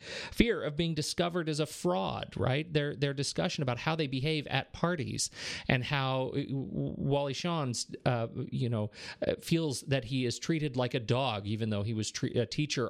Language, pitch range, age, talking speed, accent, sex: English, 115-145 Hz, 40-59, 180 wpm, American, male